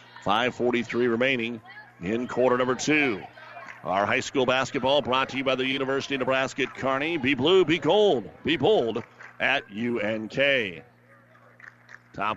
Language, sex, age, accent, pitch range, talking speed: English, male, 50-69, American, 115-135 Hz, 135 wpm